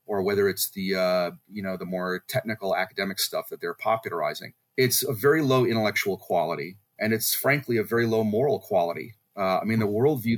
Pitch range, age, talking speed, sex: 100-125 Hz, 30-49, 195 wpm, male